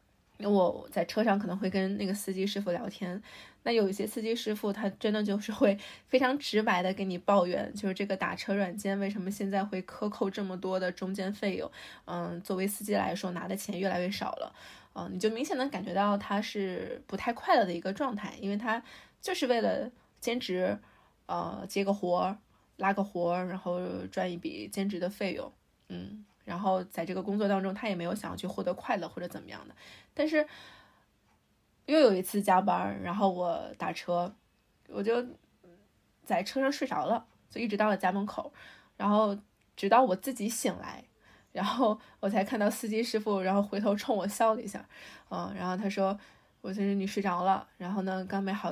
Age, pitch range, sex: 20-39, 185-215 Hz, female